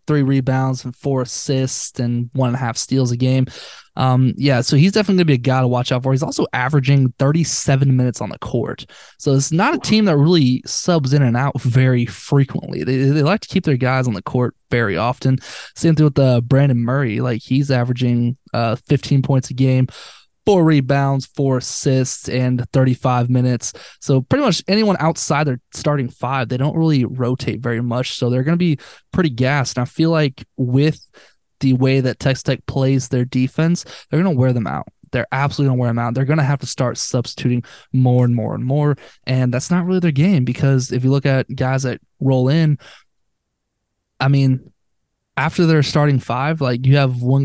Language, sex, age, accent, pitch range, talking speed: English, male, 20-39, American, 125-145 Hz, 210 wpm